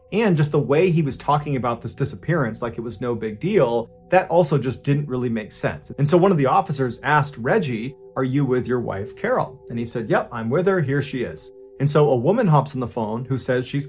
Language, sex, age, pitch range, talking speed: English, male, 30-49, 120-145 Hz, 250 wpm